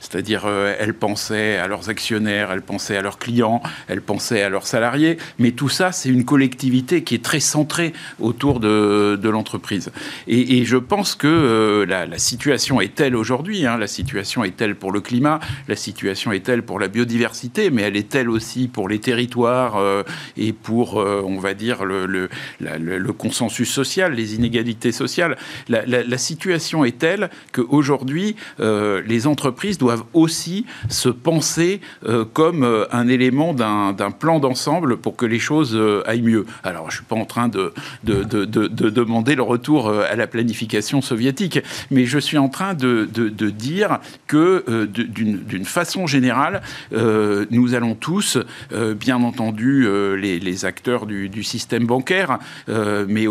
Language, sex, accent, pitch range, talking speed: French, male, French, 105-140 Hz, 180 wpm